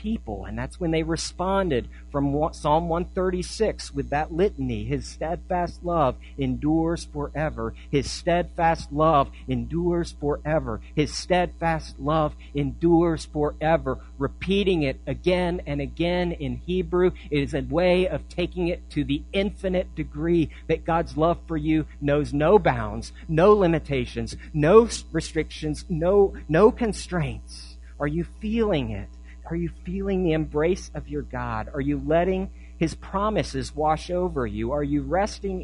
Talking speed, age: 135 wpm, 40-59